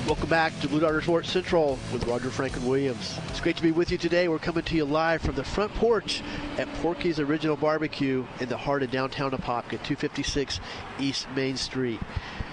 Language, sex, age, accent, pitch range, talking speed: English, male, 50-69, American, 130-155 Hz, 195 wpm